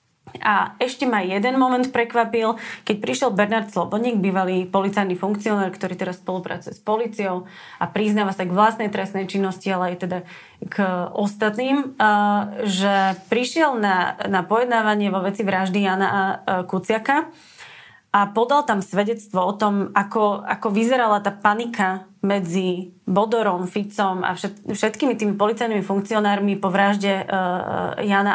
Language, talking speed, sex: Slovak, 130 wpm, female